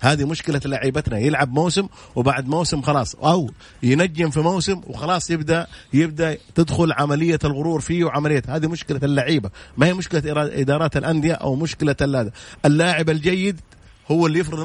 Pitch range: 130-165 Hz